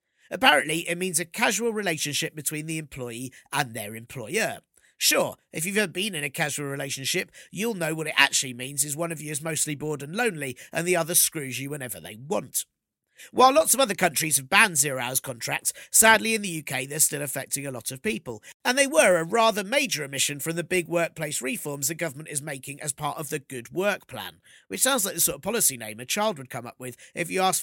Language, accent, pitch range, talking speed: English, British, 140-185 Hz, 230 wpm